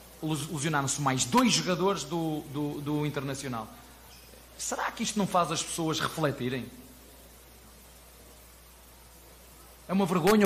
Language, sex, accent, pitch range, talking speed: Portuguese, male, Portuguese, 135-185 Hz, 105 wpm